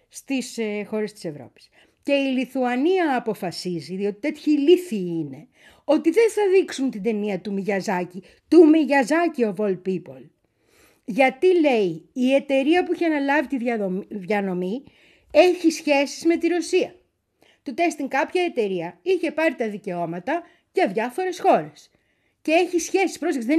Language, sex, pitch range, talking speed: Greek, female, 210-335 Hz, 140 wpm